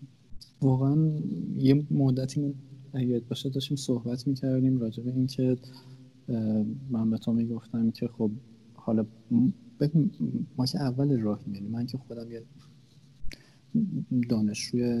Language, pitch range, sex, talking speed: Persian, 110-145 Hz, male, 115 wpm